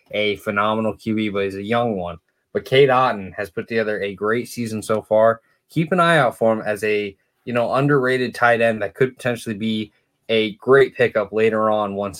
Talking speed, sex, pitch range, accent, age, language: 205 wpm, male, 110-125 Hz, American, 20-39, English